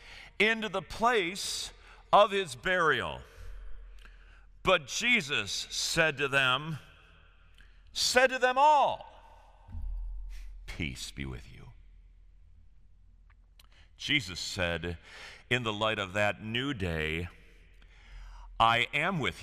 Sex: male